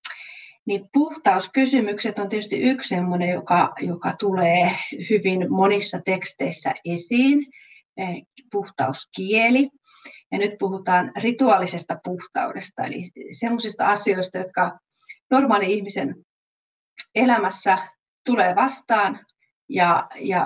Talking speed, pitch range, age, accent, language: 85 wpm, 185-235 Hz, 30-49, native, Finnish